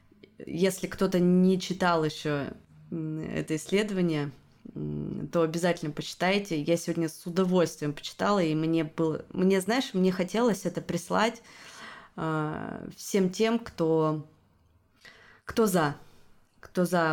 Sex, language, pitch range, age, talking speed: female, Russian, 160-210 Hz, 20-39, 110 wpm